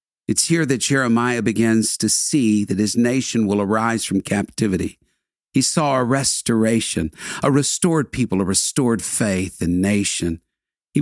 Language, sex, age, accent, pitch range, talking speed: English, male, 50-69, American, 95-130 Hz, 145 wpm